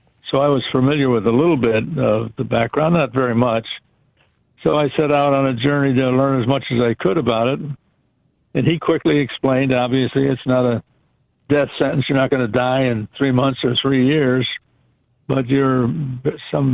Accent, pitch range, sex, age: American, 125-145 Hz, male, 60-79